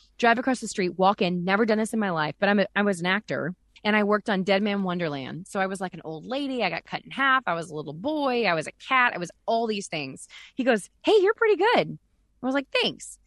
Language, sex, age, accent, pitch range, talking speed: English, female, 20-39, American, 180-235 Hz, 280 wpm